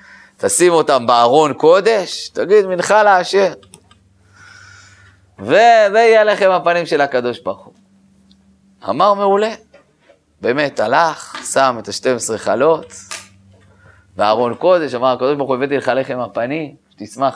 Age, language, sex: 30-49, Hebrew, male